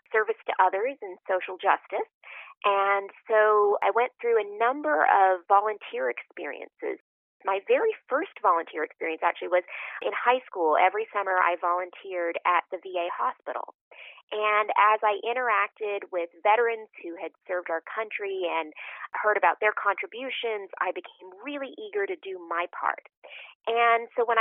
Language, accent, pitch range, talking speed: English, American, 185-250 Hz, 150 wpm